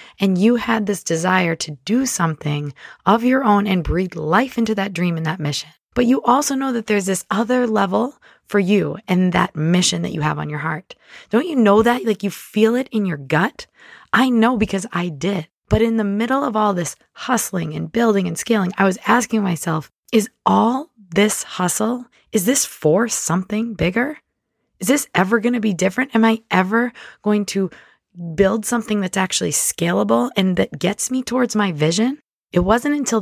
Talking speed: 195 wpm